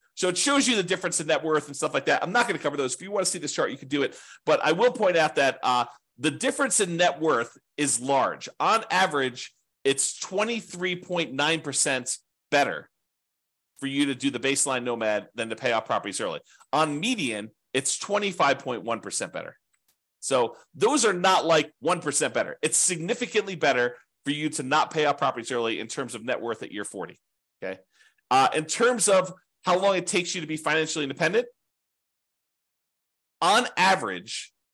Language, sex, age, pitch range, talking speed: English, male, 40-59, 135-195 Hz, 190 wpm